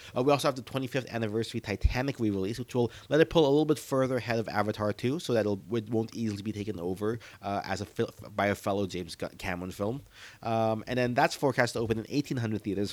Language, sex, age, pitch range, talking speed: English, male, 30-49, 100-130 Hz, 220 wpm